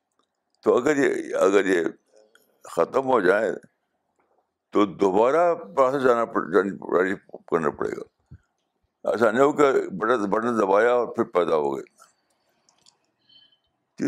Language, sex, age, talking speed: Urdu, male, 60-79, 105 wpm